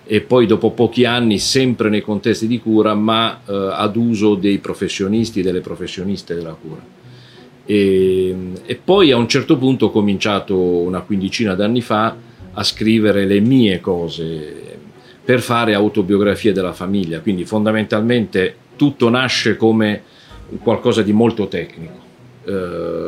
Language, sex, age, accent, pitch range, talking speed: Italian, male, 40-59, native, 95-115 Hz, 140 wpm